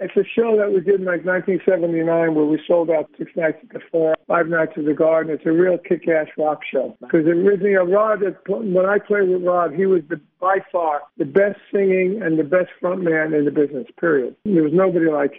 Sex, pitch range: male, 160-185 Hz